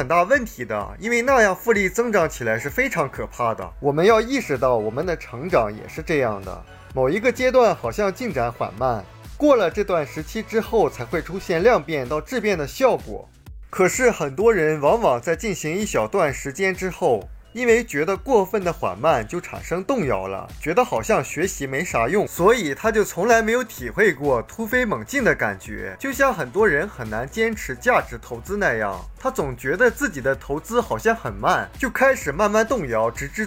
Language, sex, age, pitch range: Chinese, male, 20-39, 145-230 Hz